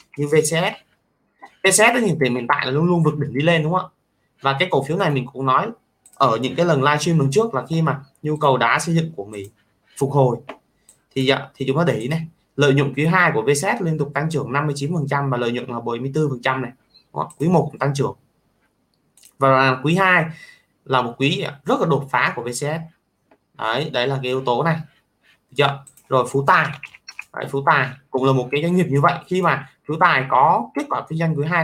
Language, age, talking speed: Vietnamese, 20-39, 225 wpm